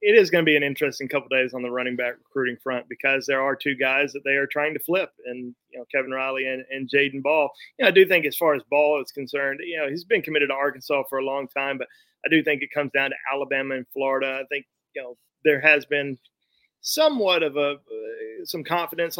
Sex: male